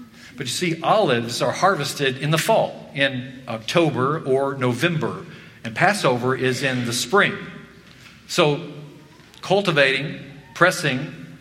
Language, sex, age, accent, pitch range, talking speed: English, male, 50-69, American, 130-165 Hz, 115 wpm